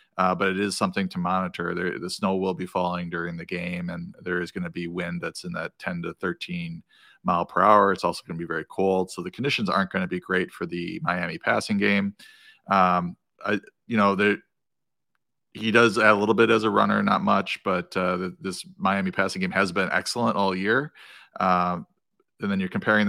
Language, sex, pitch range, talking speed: English, male, 90-100 Hz, 220 wpm